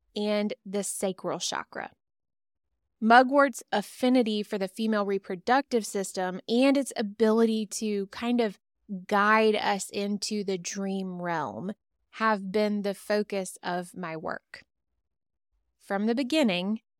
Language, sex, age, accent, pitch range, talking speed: English, female, 20-39, American, 190-230 Hz, 115 wpm